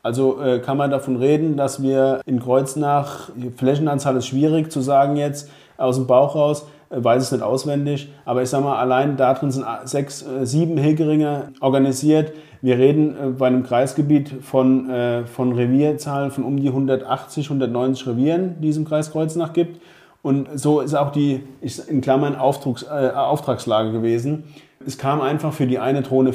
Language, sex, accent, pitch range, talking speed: German, male, German, 130-150 Hz, 180 wpm